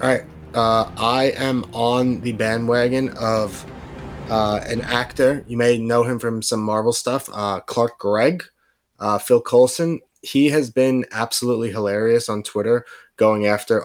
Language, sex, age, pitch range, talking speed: English, male, 20-39, 100-120 Hz, 150 wpm